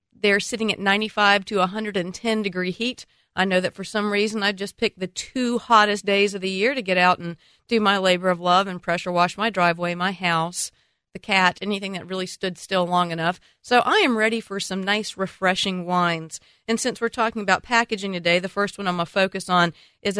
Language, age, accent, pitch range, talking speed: English, 40-59, American, 170-210 Hz, 220 wpm